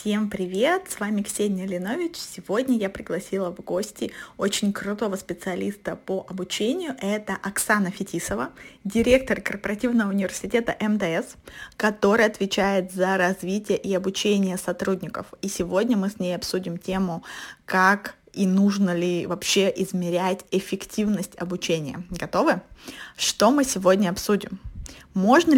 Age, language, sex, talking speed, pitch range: 20-39, Russian, female, 120 wpm, 190-235 Hz